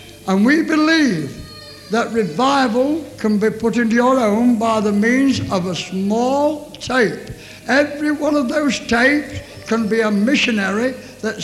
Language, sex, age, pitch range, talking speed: English, male, 60-79, 225-280 Hz, 145 wpm